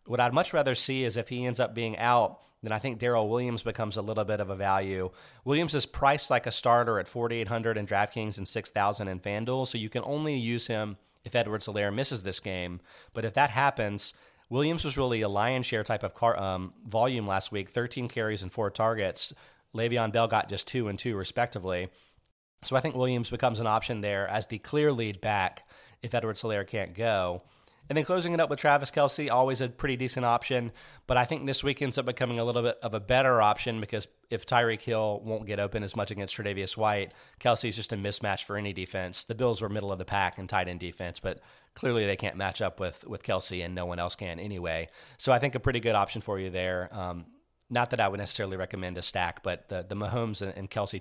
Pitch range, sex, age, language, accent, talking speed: 100-125 Hz, male, 30-49, English, American, 230 wpm